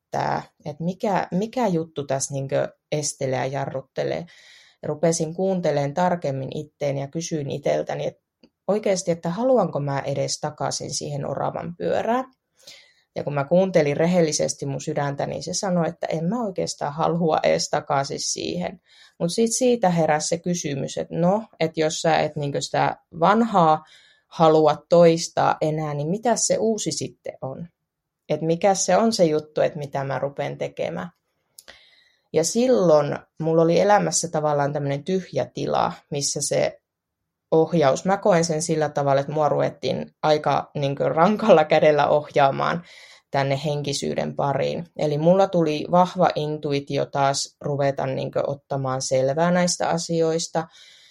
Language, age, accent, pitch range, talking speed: Finnish, 30-49, native, 145-175 Hz, 135 wpm